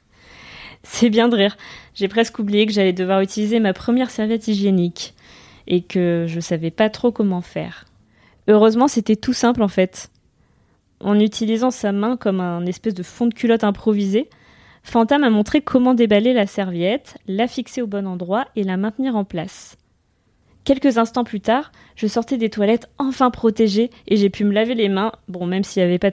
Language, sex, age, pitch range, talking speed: French, female, 20-39, 190-230 Hz, 185 wpm